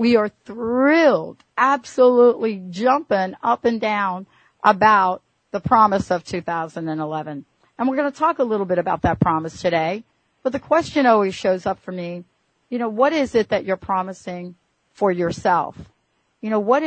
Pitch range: 175-230 Hz